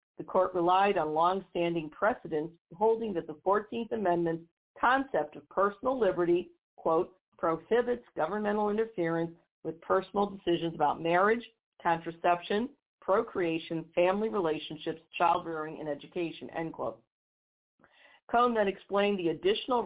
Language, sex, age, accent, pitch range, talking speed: English, female, 50-69, American, 170-210 Hz, 115 wpm